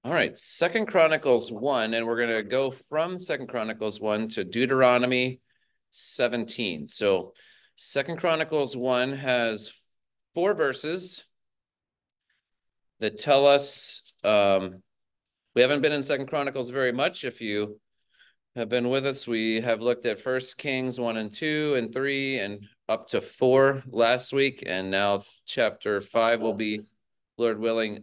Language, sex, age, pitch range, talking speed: English, male, 30-49, 105-135 Hz, 145 wpm